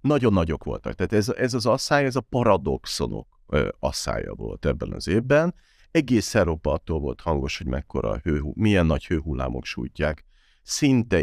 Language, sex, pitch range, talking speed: Hungarian, male, 85-115 Hz, 155 wpm